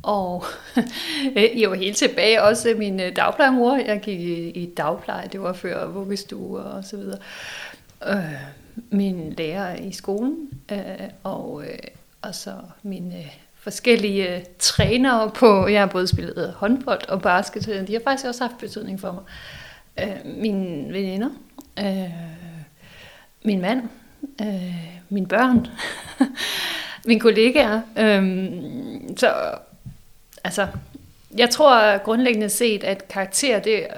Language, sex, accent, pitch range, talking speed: Danish, female, native, 190-235 Hz, 130 wpm